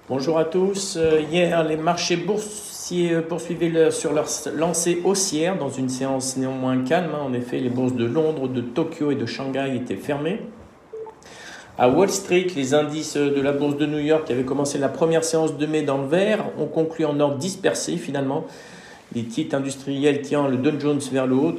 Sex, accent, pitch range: male, French, 130-160 Hz